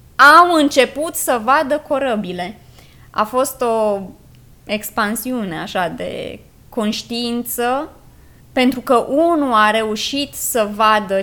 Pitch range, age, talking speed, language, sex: 215-255 Hz, 20-39, 100 wpm, Romanian, female